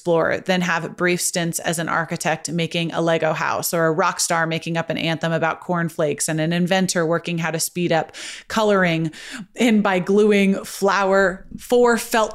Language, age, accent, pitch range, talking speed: English, 30-49, American, 165-200 Hz, 180 wpm